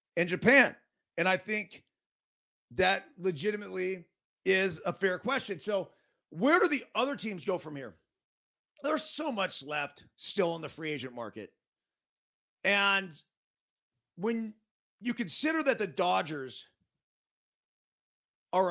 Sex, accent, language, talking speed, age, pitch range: male, American, English, 120 wpm, 40-59, 175-250 Hz